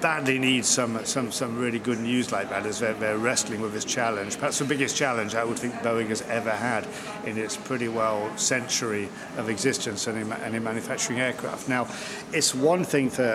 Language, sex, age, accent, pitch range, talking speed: English, male, 50-69, British, 115-145 Hz, 205 wpm